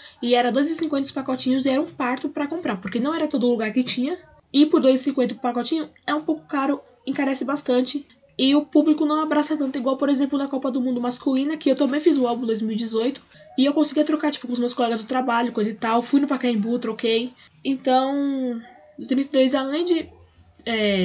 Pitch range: 225-280 Hz